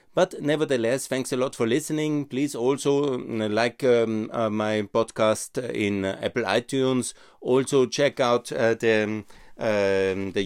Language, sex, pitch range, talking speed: German, male, 95-115 Hz, 130 wpm